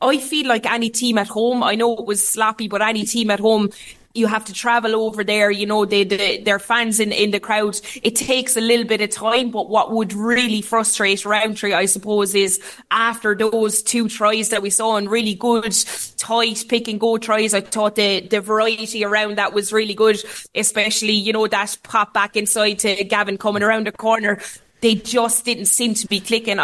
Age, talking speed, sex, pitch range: 20-39, 205 wpm, female, 205-225 Hz